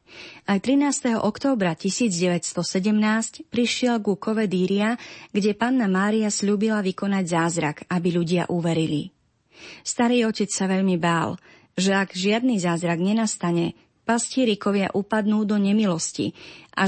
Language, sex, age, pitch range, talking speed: Slovak, female, 30-49, 175-225 Hz, 115 wpm